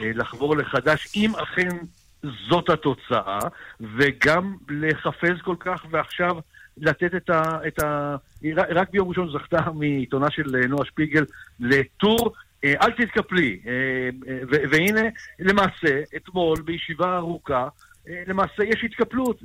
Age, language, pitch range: 60-79, Hebrew, 130-170 Hz